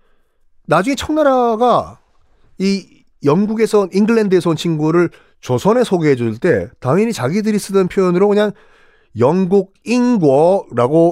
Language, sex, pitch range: Korean, male, 130-215 Hz